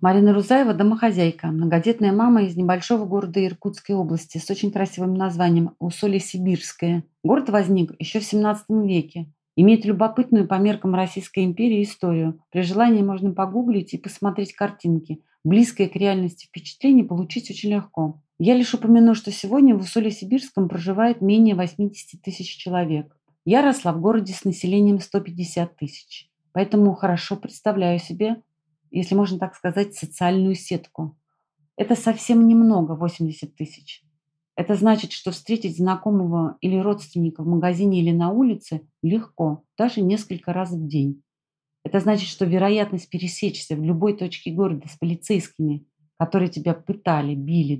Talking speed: 140 wpm